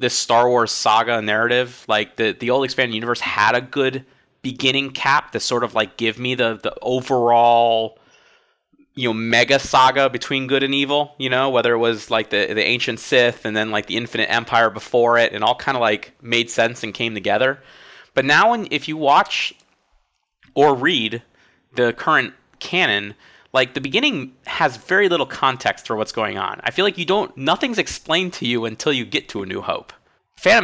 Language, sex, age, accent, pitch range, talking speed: English, male, 30-49, American, 115-135 Hz, 195 wpm